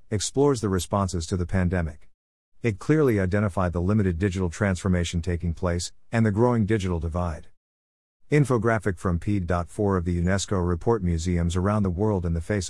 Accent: American